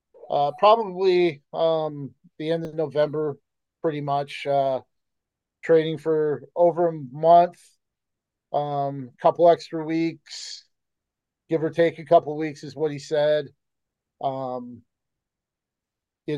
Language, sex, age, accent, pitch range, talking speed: English, male, 40-59, American, 140-165 Hz, 115 wpm